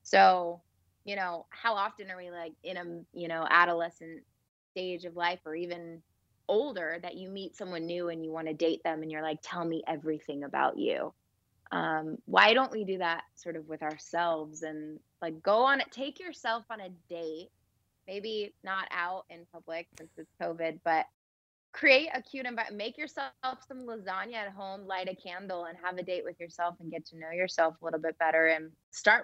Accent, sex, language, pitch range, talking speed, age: American, female, English, 165-205 Hz, 200 wpm, 20-39